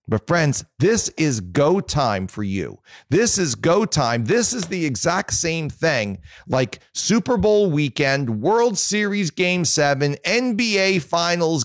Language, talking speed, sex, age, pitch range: English, 145 wpm, male, 40-59, 125-170 Hz